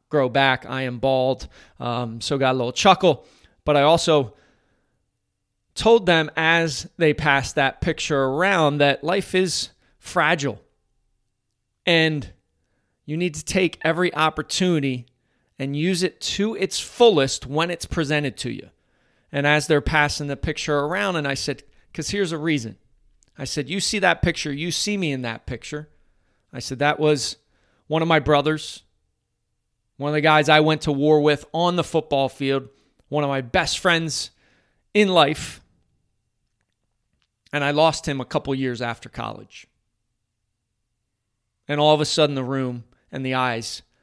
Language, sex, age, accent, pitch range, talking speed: English, male, 30-49, American, 115-160 Hz, 160 wpm